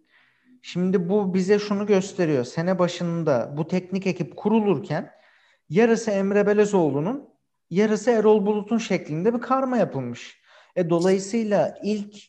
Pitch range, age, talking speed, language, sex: 150-190 Hz, 40-59, 115 wpm, Turkish, male